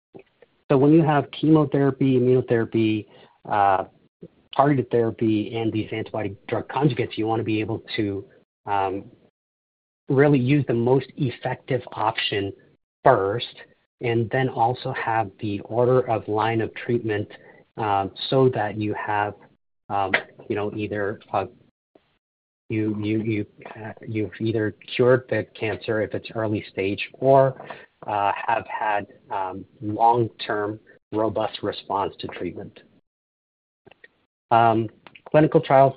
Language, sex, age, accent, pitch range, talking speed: English, male, 40-59, American, 105-130 Hz, 125 wpm